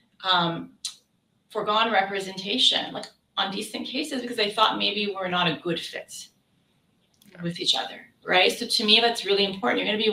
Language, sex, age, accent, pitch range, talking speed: English, female, 30-49, American, 185-235 Hz, 170 wpm